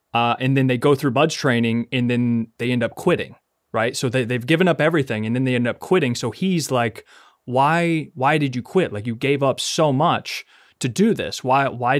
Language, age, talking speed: English, 20-39, 230 wpm